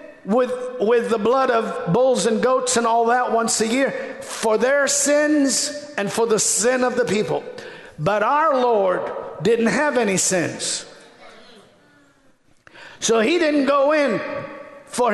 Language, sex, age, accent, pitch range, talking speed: English, male, 50-69, American, 240-285 Hz, 145 wpm